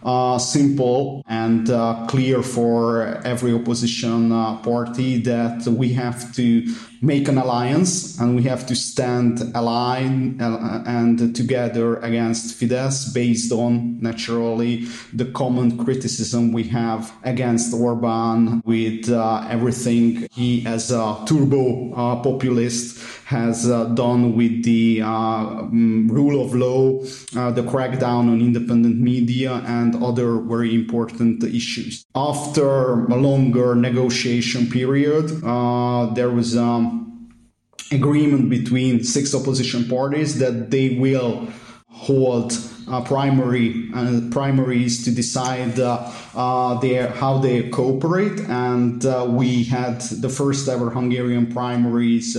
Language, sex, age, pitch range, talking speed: English, male, 30-49, 115-125 Hz, 120 wpm